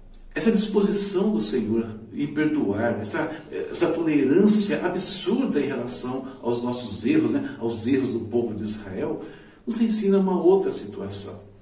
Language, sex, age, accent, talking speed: Portuguese, male, 60-79, Brazilian, 140 wpm